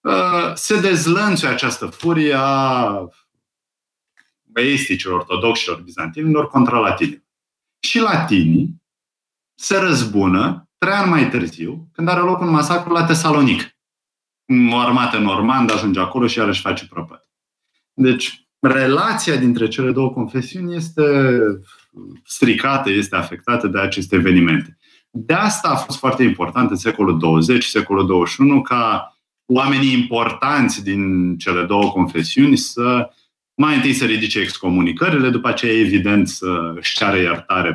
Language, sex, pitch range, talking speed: Romanian, male, 95-145 Hz, 125 wpm